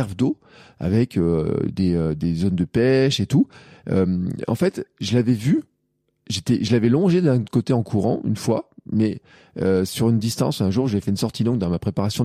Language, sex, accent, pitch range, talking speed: French, male, French, 100-130 Hz, 205 wpm